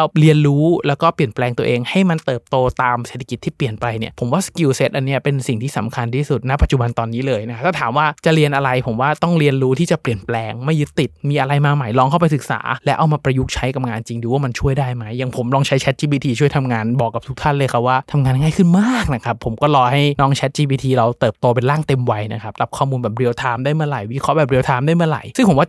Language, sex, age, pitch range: Thai, male, 20-39, 120-145 Hz